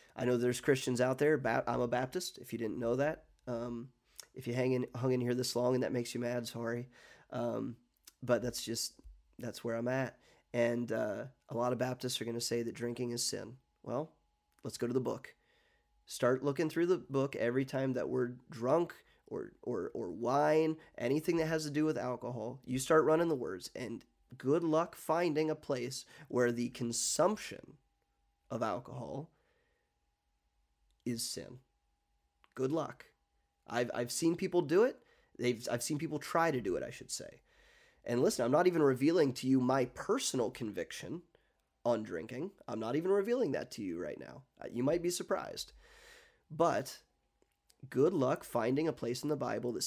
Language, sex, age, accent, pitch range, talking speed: English, male, 30-49, American, 120-155 Hz, 185 wpm